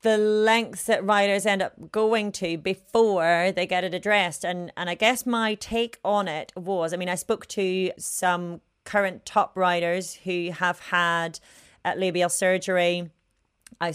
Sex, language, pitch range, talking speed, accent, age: female, English, 170-210 Hz, 165 wpm, British, 30-49